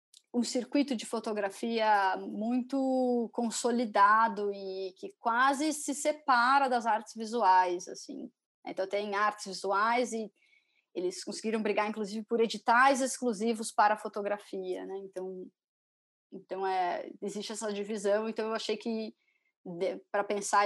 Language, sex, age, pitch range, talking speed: Portuguese, female, 20-39, 200-235 Hz, 125 wpm